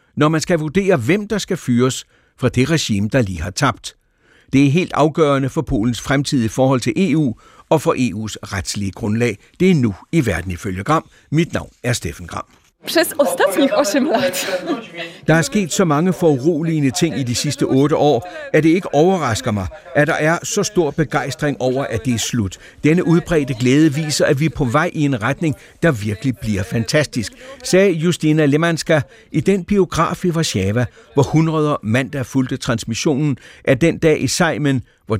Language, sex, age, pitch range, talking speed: Danish, male, 60-79, 125-170 Hz, 180 wpm